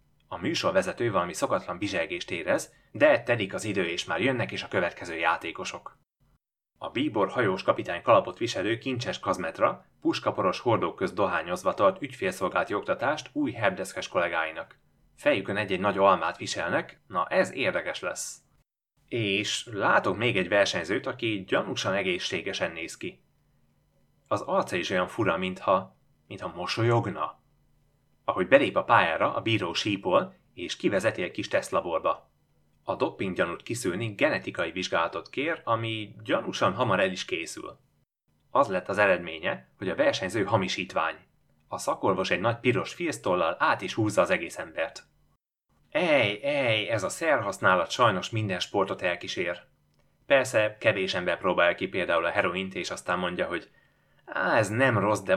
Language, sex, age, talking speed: Hungarian, male, 30-49, 145 wpm